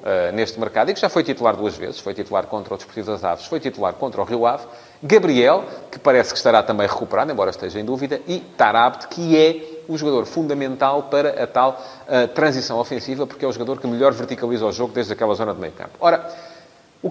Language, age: English, 30-49